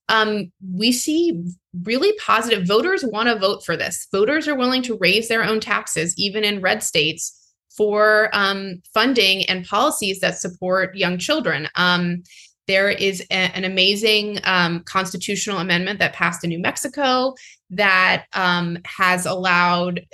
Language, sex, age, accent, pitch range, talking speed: English, female, 20-39, American, 180-215 Hz, 150 wpm